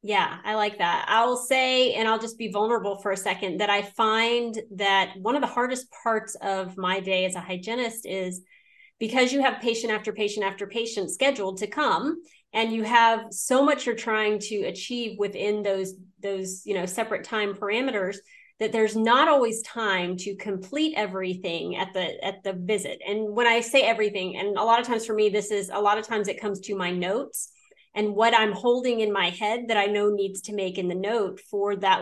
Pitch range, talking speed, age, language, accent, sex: 200-240 Hz, 205 wpm, 30-49, English, American, female